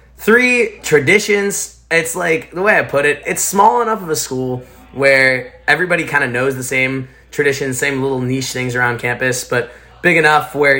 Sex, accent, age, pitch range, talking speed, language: male, American, 20-39, 120-170 Hz, 185 wpm, English